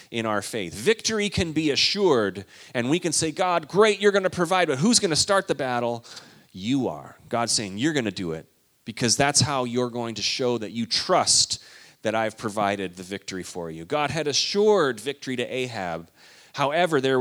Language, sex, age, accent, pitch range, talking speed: English, male, 30-49, American, 110-145 Hz, 200 wpm